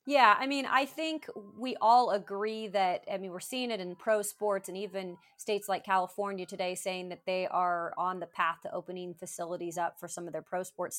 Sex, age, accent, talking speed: female, 30-49, American, 220 wpm